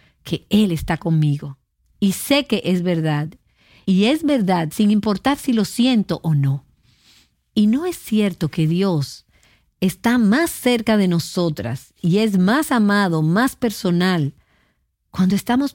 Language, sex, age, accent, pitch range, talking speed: Spanish, female, 50-69, American, 160-210 Hz, 145 wpm